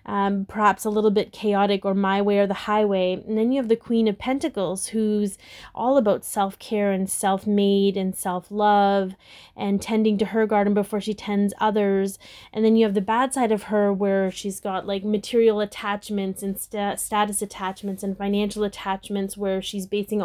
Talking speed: 180 wpm